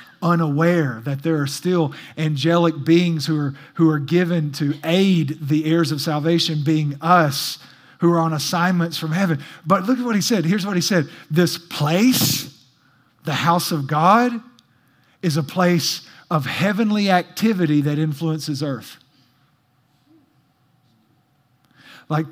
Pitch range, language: 145-180 Hz, English